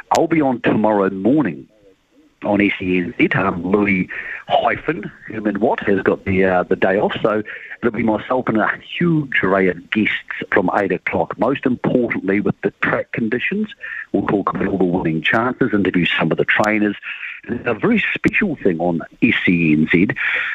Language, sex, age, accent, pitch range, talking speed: English, male, 50-69, British, 95-125 Hz, 165 wpm